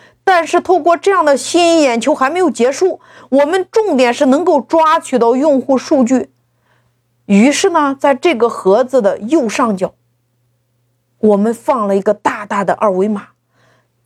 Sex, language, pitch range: female, Chinese, 195-300 Hz